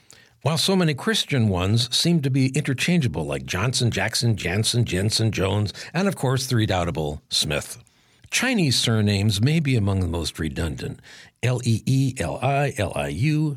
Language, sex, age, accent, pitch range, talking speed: English, male, 60-79, American, 100-140 Hz, 135 wpm